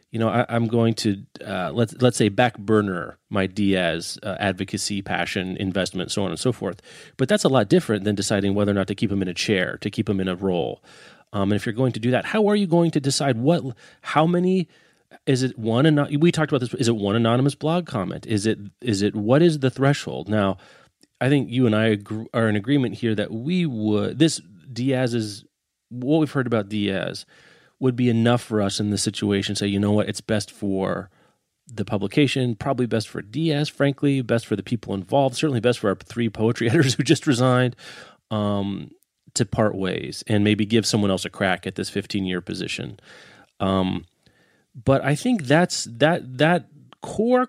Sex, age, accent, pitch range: male, 30-49, American, 105-140 Hz